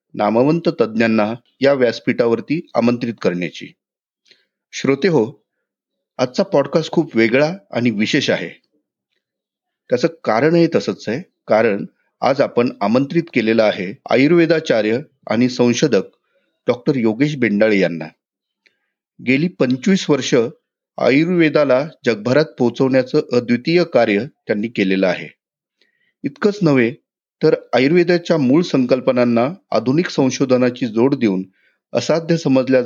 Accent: native